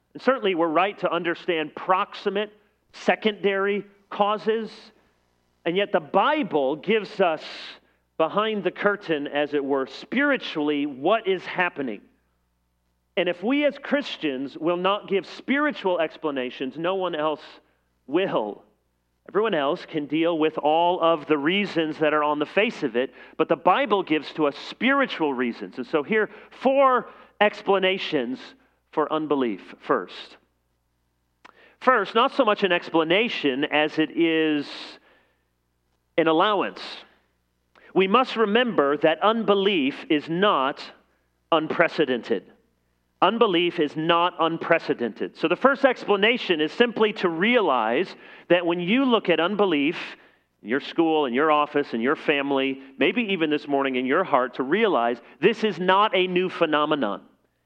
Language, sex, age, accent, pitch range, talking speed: English, male, 40-59, American, 145-205 Hz, 135 wpm